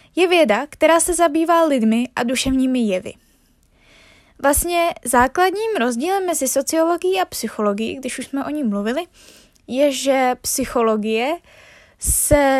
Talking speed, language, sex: 125 wpm, Czech, female